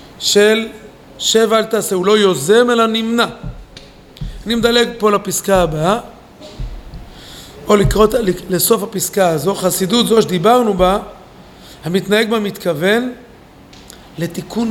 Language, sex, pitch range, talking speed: Hebrew, male, 185-225 Hz, 110 wpm